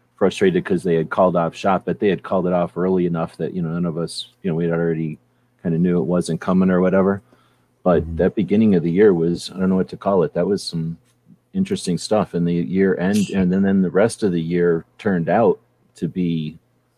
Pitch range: 85-95 Hz